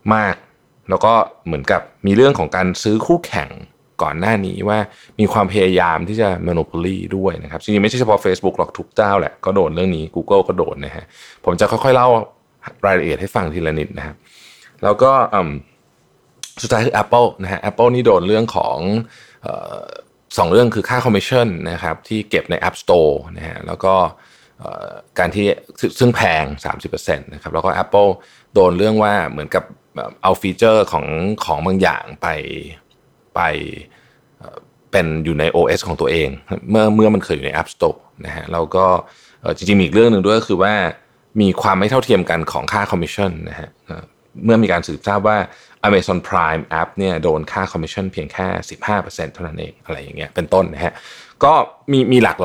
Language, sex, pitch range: Thai, male, 90-110 Hz